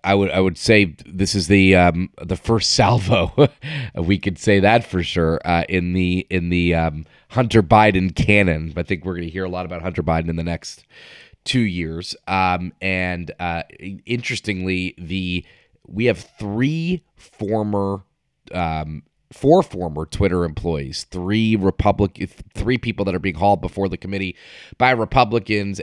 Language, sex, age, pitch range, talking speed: English, male, 30-49, 85-105 Hz, 165 wpm